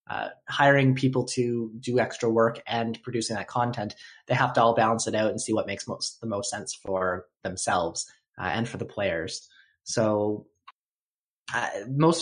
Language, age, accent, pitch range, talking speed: English, 20-39, American, 110-125 Hz, 175 wpm